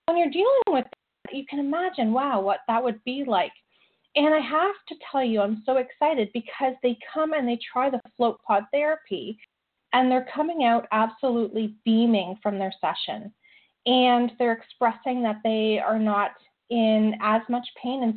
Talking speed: 180 wpm